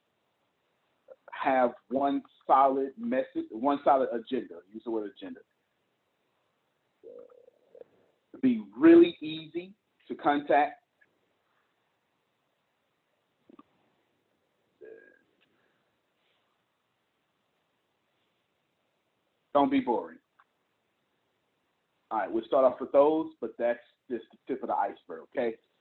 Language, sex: English, male